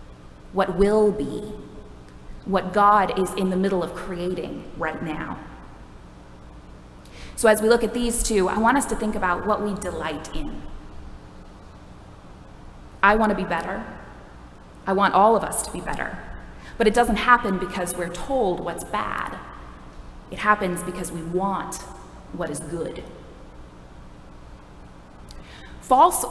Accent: American